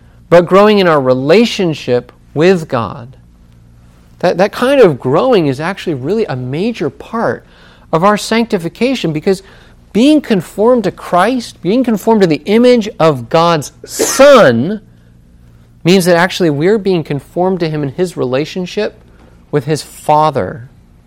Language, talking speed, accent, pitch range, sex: English, 135 wpm, American, 125-190 Hz, male